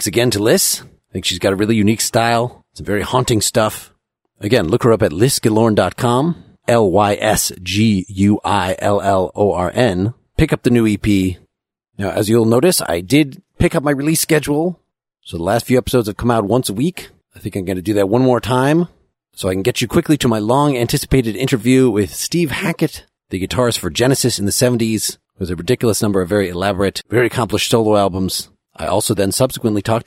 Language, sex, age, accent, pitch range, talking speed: English, male, 40-59, American, 100-125 Hz, 195 wpm